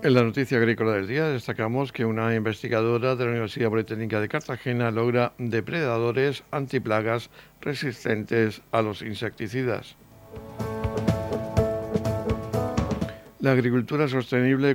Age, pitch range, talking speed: 60-79, 110-125 Hz, 105 wpm